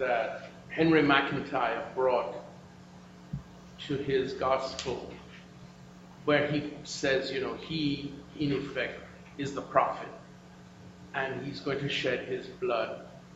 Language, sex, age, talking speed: English, male, 50-69, 110 wpm